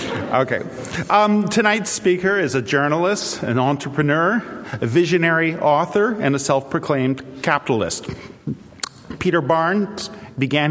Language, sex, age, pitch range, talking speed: English, male, 40-59, 125-160 Hz, 105 wpm